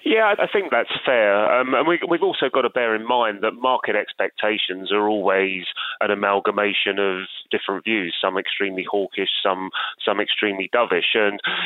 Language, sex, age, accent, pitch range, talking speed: English, male, 30-49, British, 100-120 Hz, 170 wpm